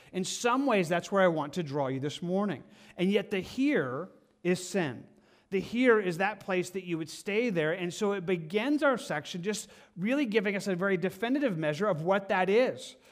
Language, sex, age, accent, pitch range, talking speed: English, male, 40-59, American, 170-205 Hz, 210 wpm